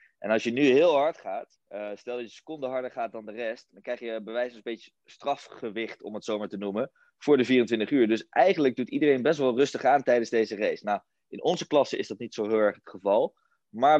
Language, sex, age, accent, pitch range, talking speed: Dutch, male, 20-39, Dutch, 100-125 Hz, 255 wpm